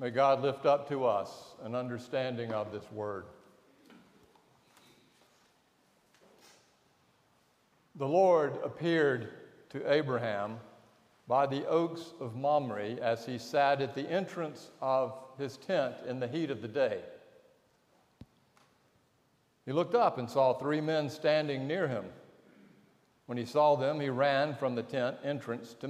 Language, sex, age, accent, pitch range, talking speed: English, male, 60-79, American, 120-155 Hz, 130 wpm